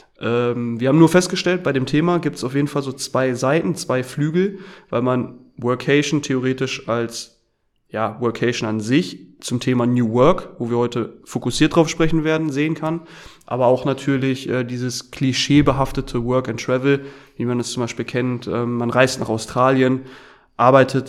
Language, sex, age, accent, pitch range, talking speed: German, male, 30-49, German, 115-135 Hz, 175 wpm